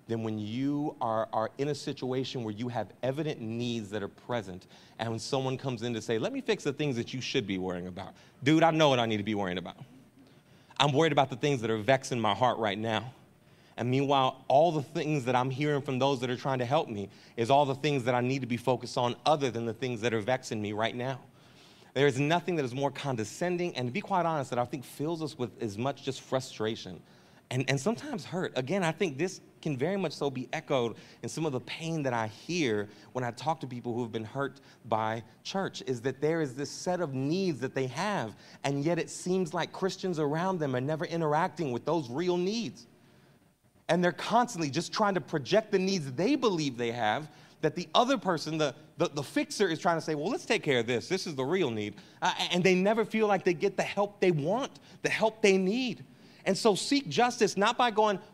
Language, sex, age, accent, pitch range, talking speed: English, male, 30-49, American, 125-175 Hz, 240 wpm